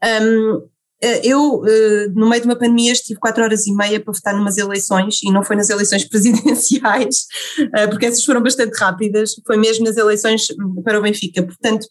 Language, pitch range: Portuguese, 195-230 Hz